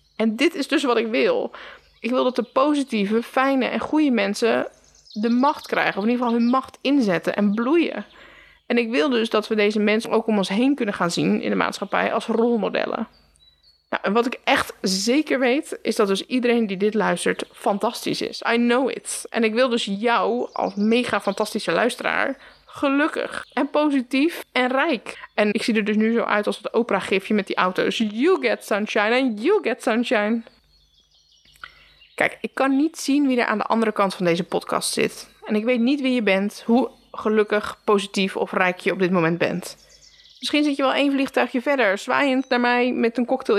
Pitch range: 205-260 Hz